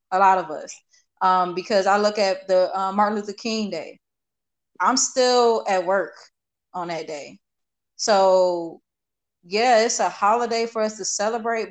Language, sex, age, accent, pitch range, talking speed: English, female, 20-39, American, 180-215 Hz, 160 wpm